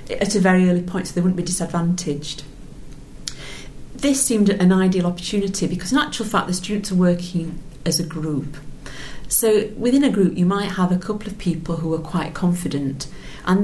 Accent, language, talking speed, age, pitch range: British, English, 185 wpm, 40-59, 160-190 Hz